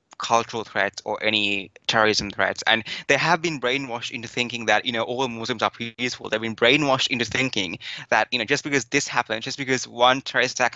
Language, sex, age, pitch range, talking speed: English, male, 20-39, 115-140 Hz, 205 wpm